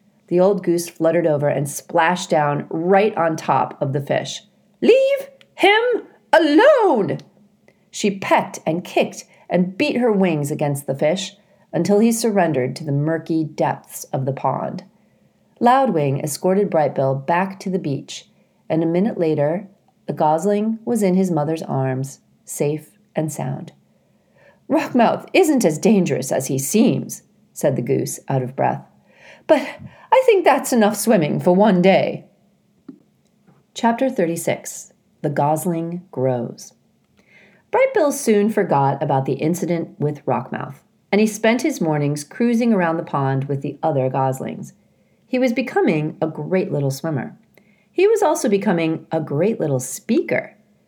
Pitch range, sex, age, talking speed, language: 150-215 Hz, female, 40-59, 145 wpm, English